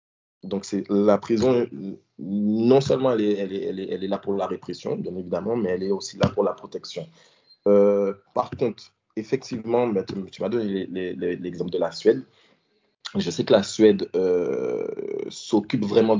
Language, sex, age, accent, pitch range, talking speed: French, male, 20-39, French, 95-120 Hz, 190 wpm